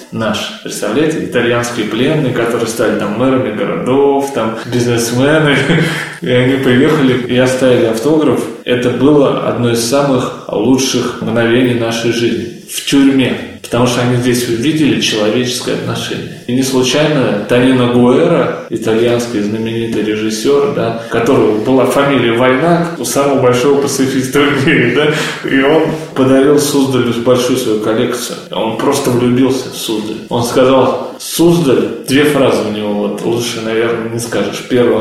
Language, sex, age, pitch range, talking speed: Russian, male, 20-39, 115-130 Hz, 140 wpm